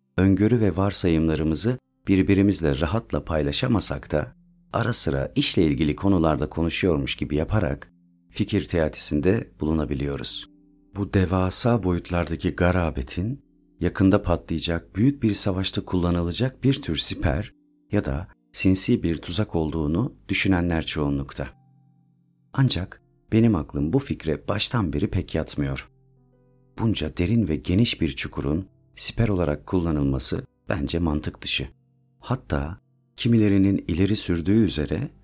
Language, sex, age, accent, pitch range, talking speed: Turkish, male, 40-59, native, 80-110 Hz, 110 wpm